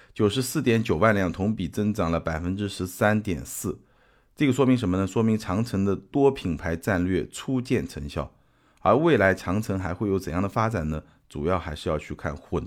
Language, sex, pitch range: Chinese, male, 85-110 Hz